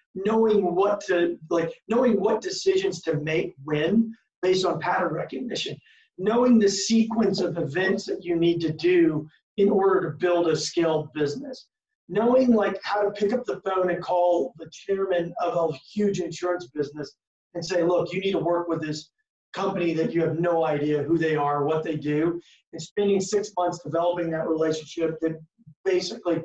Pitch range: 165-205 Hz